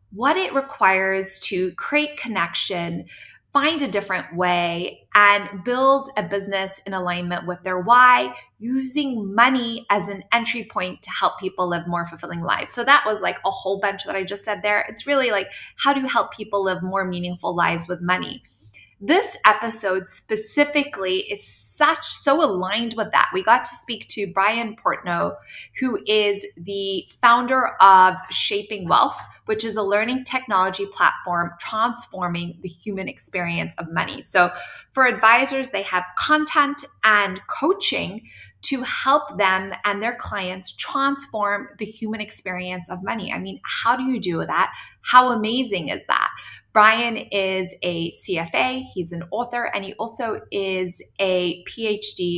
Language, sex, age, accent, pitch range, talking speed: English, female, 20-39, American, 180-235 Hz, 155 wpm